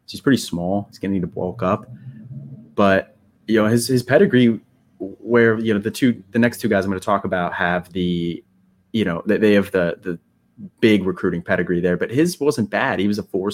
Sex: male